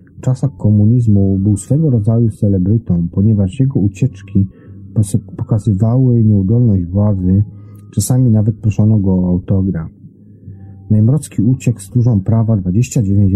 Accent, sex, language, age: native, male, Polish, 40-59